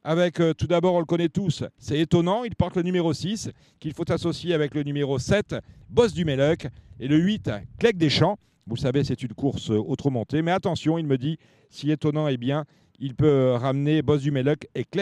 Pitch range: 140-175 Hz